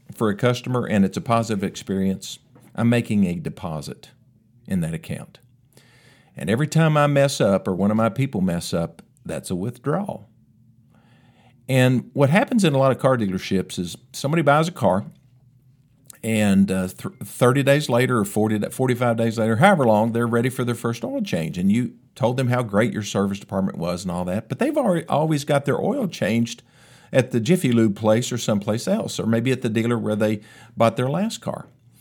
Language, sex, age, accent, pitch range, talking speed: English, male, 50-69, American, 115-145 Hz, 195 wpm